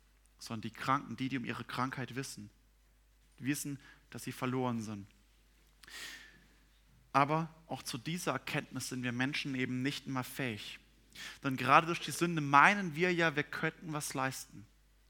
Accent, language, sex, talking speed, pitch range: German, German, male, 150 wpm, 130-155 Hz